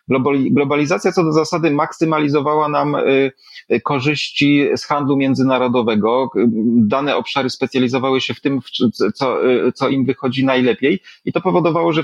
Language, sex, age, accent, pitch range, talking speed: Polish, male, 30-49, native, 125-150 Hz, 125 wpm